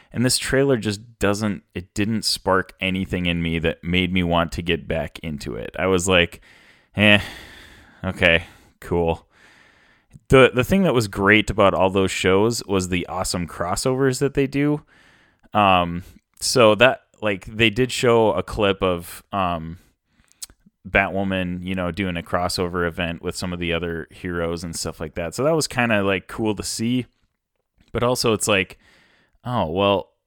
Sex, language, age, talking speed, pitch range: male, English, 20-39, 170 wpm, 85-105 Hz